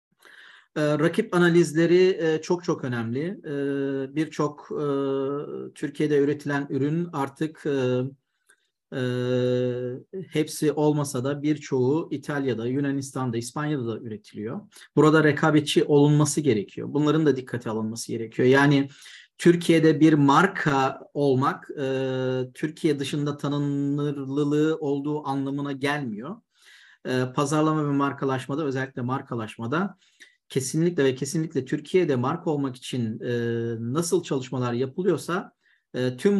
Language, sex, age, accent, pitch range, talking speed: Turkish, male, 40-59, native, 130-155 Hz, 90 wpm